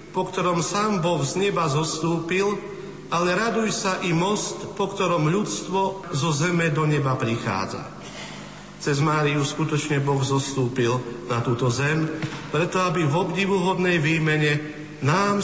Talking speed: 130 wpm